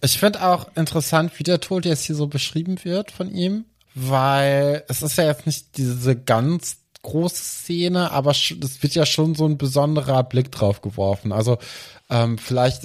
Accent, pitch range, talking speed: German, 115-140 Hz, 180 wpm